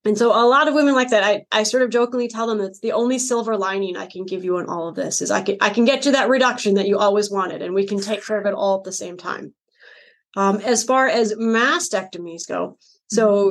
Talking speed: 265 wpm